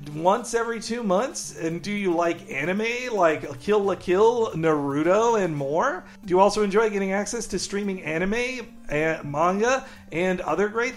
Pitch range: 165-235 Hz